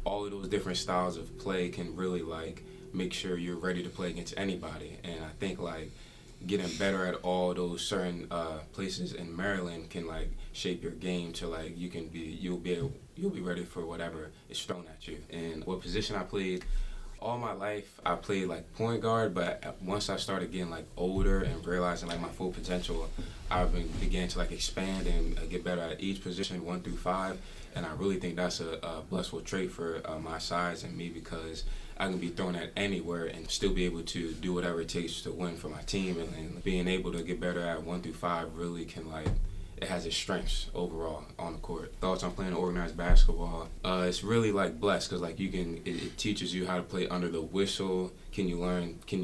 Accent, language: American, English